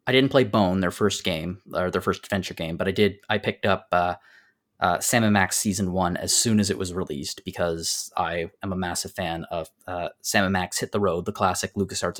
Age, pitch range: 20-39, 95-120 Hz